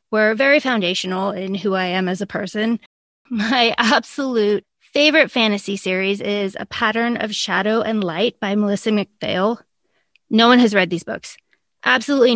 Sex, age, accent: female, 20-39, American